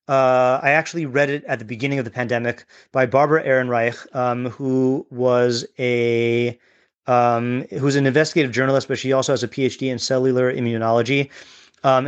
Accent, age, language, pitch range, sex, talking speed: American, 30-49, English, 120-145 Hz, male, 165 wpm